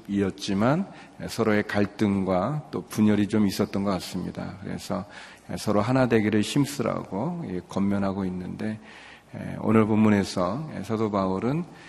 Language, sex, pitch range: Korean, male, 100-120 Hz